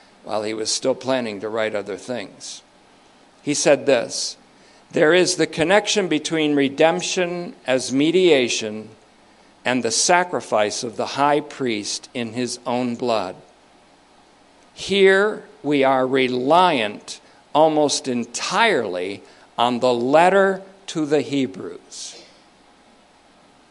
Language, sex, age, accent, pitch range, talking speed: English, male, 50-69, American, 120-170 Hz, 110 wpm